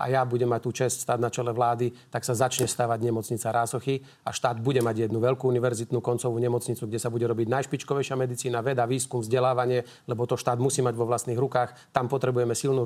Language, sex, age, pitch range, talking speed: Slovak, male, 40-59, 120-135 Hz, 210 wpm